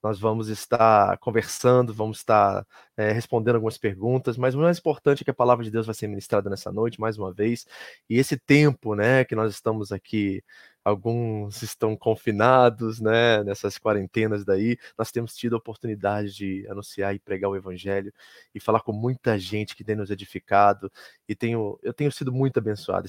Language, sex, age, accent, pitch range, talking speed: Portuguese, male, 20-39, Brazilian, 105-125 Hz, 180 wpm